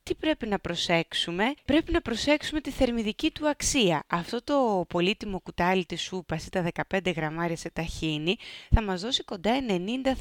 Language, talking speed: Greek, 165 wpm